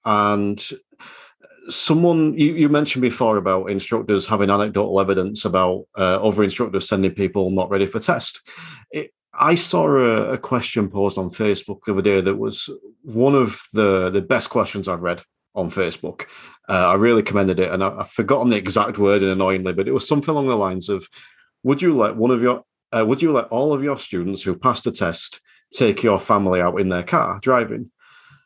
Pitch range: 100-145 Hz